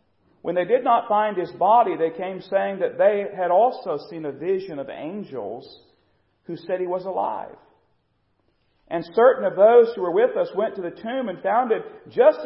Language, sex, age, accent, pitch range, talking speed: English, male, 40-59, American, 180-280 Hz, 195 wpm